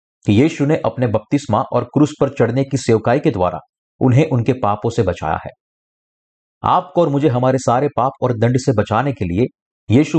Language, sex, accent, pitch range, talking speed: Hindi, male, native, 105-140 Hz, 185 wpm